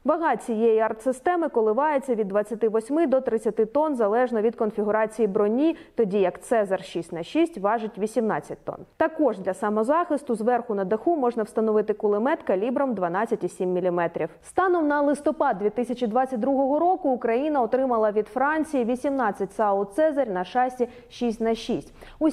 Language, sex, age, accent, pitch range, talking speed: Ukrainian, female, 20-39, native, 210-265 Hz, 130 wpm